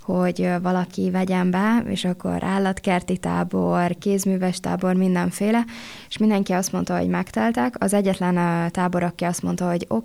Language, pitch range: Hungarian, 180-195 Hz